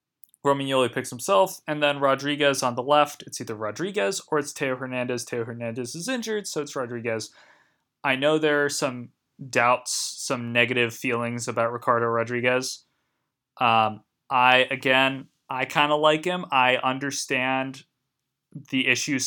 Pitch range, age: 120-150 Hz, 20-39